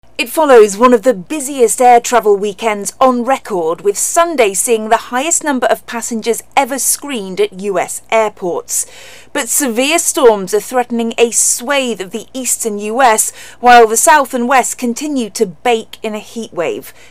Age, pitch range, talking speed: 40-59, 190-260 Hz, 160 wpm